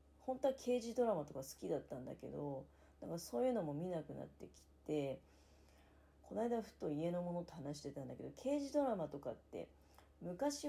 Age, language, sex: 40-59, Japanese, female